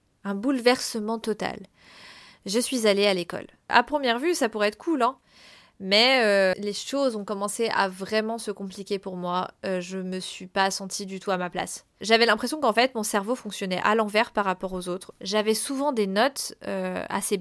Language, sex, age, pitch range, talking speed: French, female, 20-39, 190-230 Hz, 200 wpm